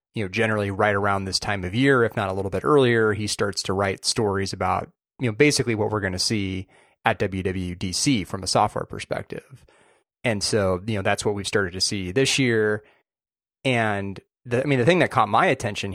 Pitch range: 95-115 Hz